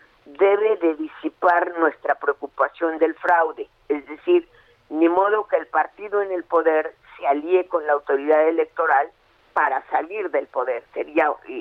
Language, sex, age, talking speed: Spanish, female, 50-69, 145 wpm